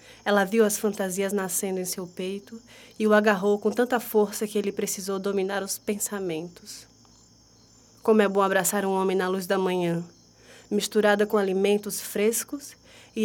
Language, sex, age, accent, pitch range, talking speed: Portuguese, female, 20-39, Brazilian, 190-230 Hz, 160 wpm